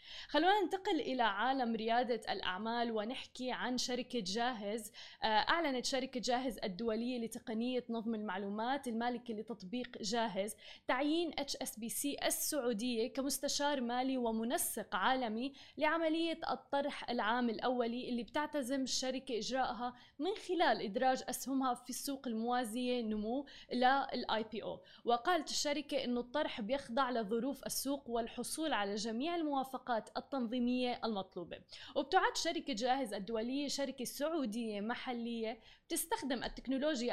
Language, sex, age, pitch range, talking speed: Arabic, female, 20-39, 230-275 Hz, 110 wpm